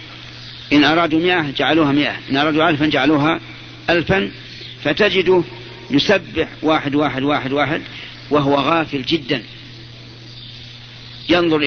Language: Arabic